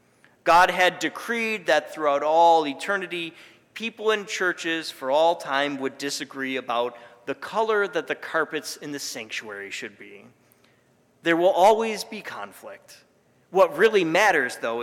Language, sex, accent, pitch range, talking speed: English, male, American, 145-195 Hz, 140 wpm